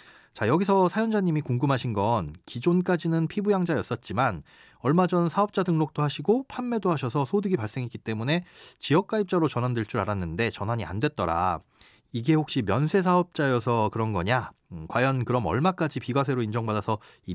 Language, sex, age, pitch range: Korean, male, 30-49, 115-175 Hz